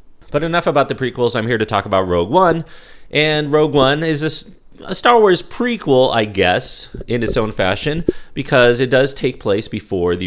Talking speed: 200 wpm